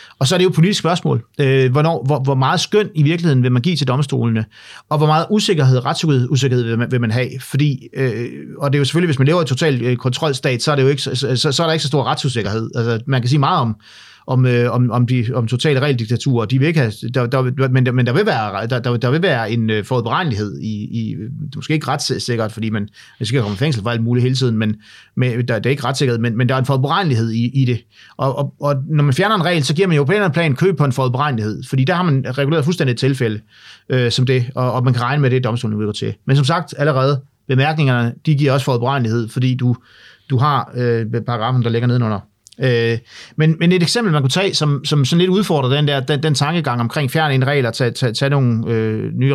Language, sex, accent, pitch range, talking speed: Danish, male, native, 120-150 Hz, 240 wpm